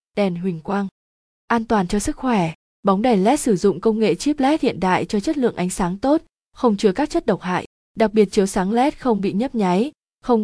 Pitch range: 190-240 Hz